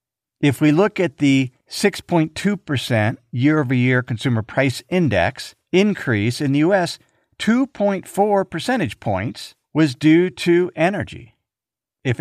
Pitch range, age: 120-175 Hz, 50-69